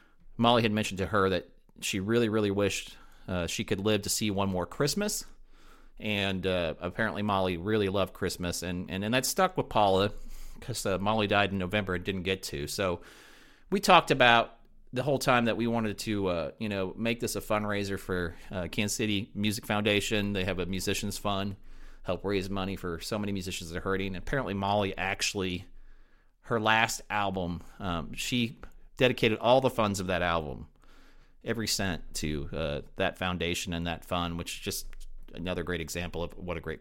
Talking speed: 190 wpm